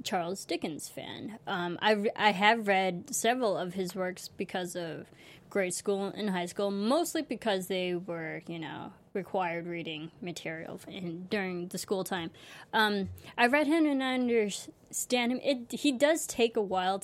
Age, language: 20-39, English